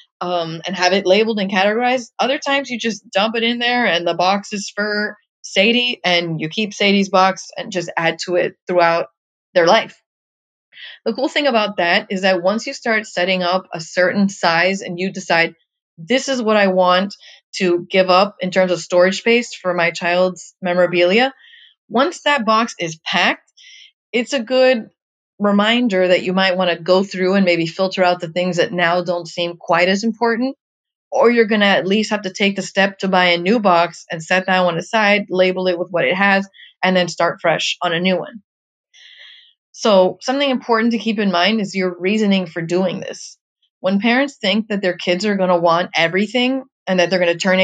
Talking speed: 205 wpm